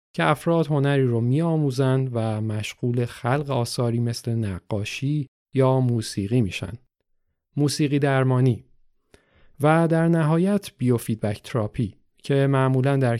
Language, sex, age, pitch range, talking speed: Persian, male, 40-59, 115-140 Hz, 110 wpm